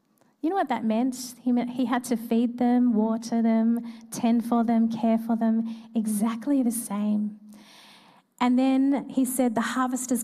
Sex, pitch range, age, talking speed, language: female, 210-240 Hz, 30-49, 165 wpm, English